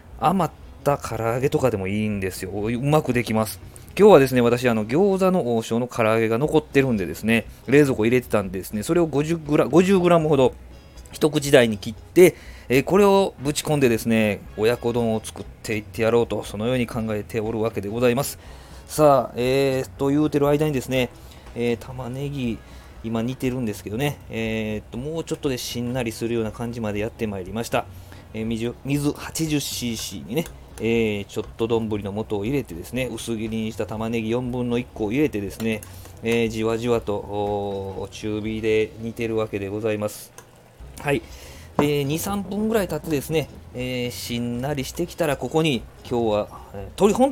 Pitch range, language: 105-140 Hz, Japanese